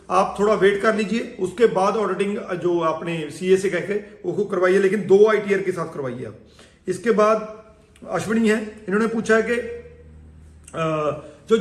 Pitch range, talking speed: 190-220 Hz, 150 wpm